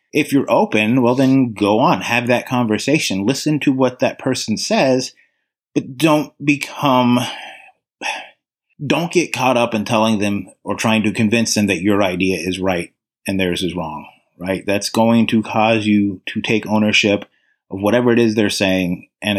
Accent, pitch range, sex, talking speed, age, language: American, 110-135 Hz, male, 175 wpm, 30-49, English